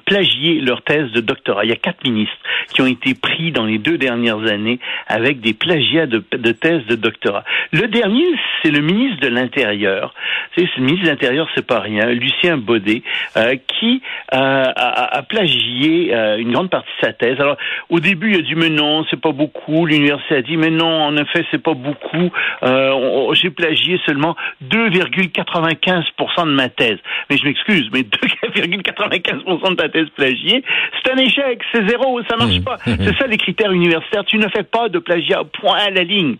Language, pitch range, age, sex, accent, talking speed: French, 135-185 Hz, 60-79, male, French, 195 wpm